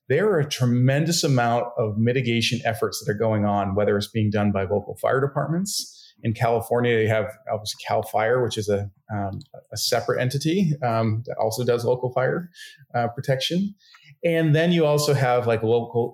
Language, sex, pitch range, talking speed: English, male, 110-140 Hz, 180 wpm